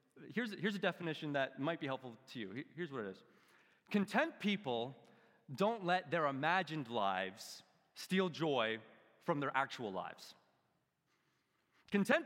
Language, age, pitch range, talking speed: English, 30-49, 140-195 Hz, 135 wpm